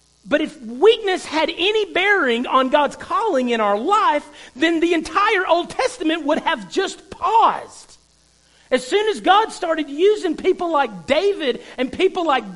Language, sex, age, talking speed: English, male, 40-59, 160 wpm